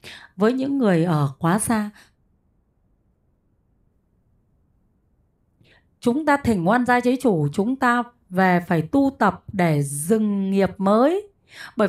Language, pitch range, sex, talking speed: Vietnamese, 210-285 Hz, female, 120 wpm